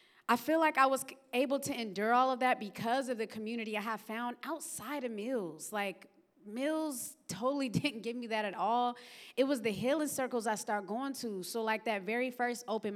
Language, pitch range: English, 205-240 Hz